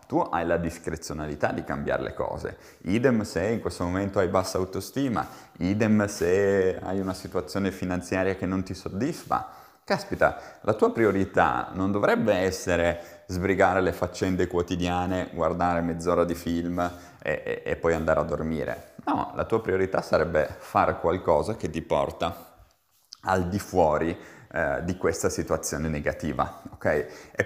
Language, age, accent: Italian, 30-49, native